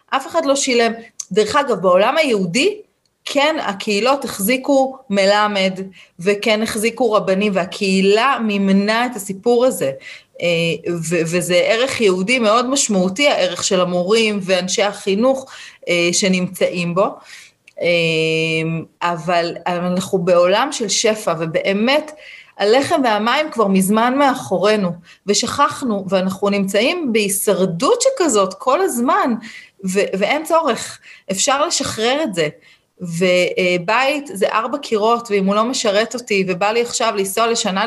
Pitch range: 190-265 Hz